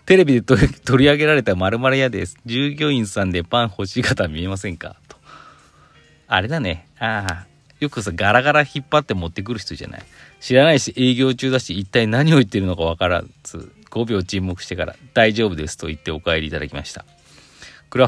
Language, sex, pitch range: Japanese, male, 90-130 Hz